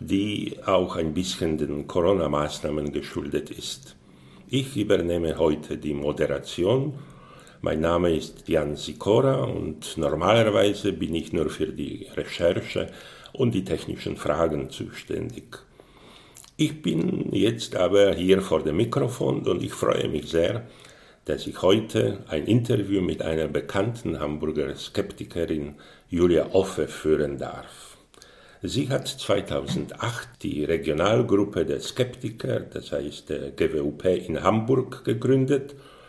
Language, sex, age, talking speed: German, male, 60-79, 120 wpm